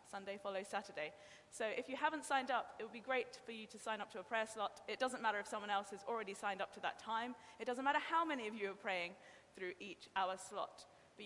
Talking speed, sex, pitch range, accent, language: 260 wpm, female, 190-240 Hz, British, English